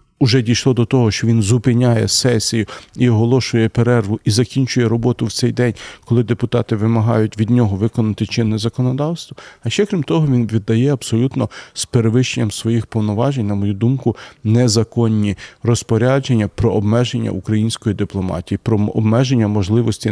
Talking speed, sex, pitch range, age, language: 145 wpm, male, 105-125 Hz, 40-59, Ukrainian